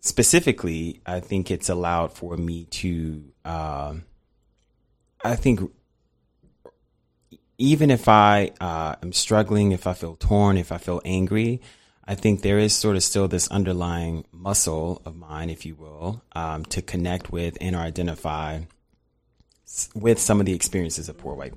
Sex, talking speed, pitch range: male, 150 wpm, 85-105 Hz